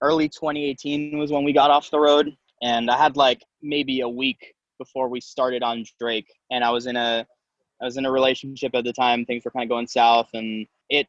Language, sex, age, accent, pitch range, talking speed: English, male, 20-39, American, 120-145 Hz, 225 wpm